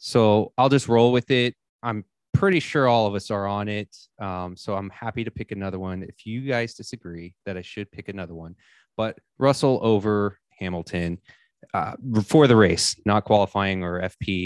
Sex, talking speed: male, 185 wpm